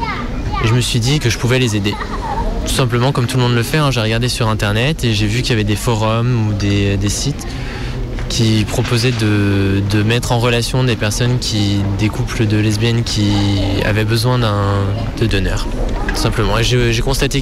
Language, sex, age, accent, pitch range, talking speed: French, male, 20-39, French, 105-125 Hz, 195 wpm